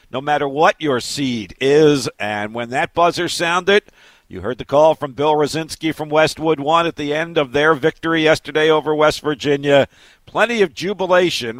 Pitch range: 130-175 Hz